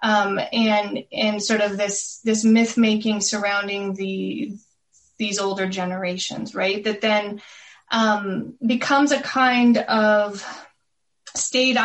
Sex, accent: female, American